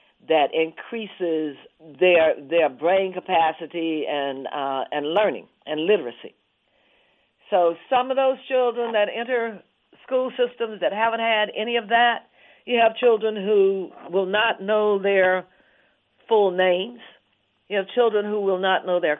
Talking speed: 140 wpm